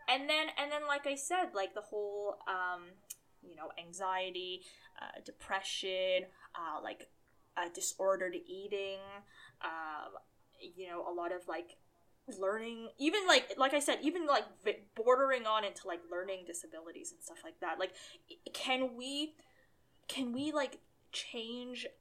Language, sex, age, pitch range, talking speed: English, female, 10-29, 175-260 Hz, 145 wpm